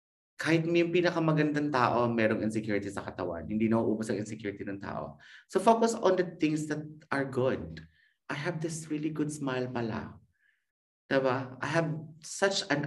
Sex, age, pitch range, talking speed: male, 30-49, 125-170 Hz, 165 wpm